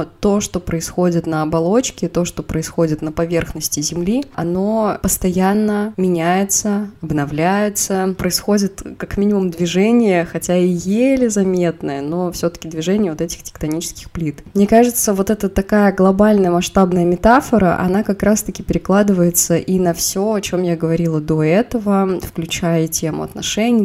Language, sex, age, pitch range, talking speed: Russian, female, 20-39, 155-200 Hz, 140 wpm